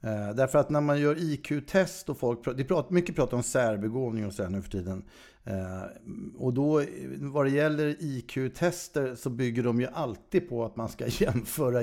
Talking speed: 180 wpm